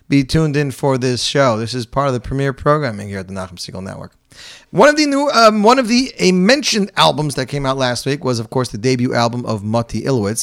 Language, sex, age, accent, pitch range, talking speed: English, male, 30-49, American, 115-155 Hz, 255 wpm